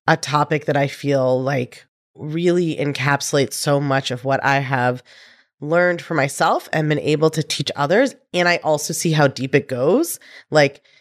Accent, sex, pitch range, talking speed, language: American, female, 135-170 Hz, 175 wpm, English